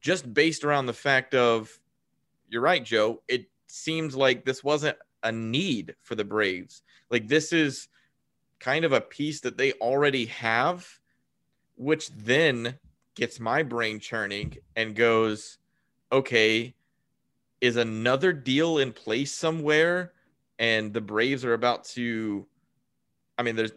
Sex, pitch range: male, 110-140 Hz